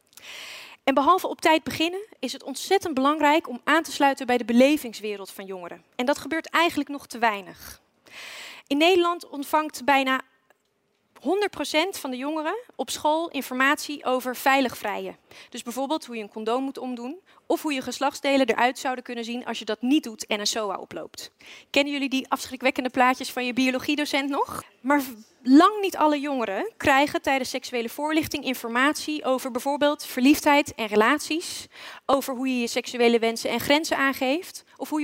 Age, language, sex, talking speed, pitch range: 30-49, Dutch, female, 170 wpm, 245-295 Hz